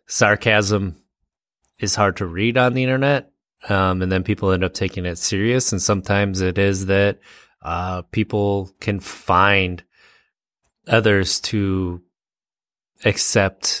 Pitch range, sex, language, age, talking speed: 90-110 Hz, male, English, 30-49, 125 wpm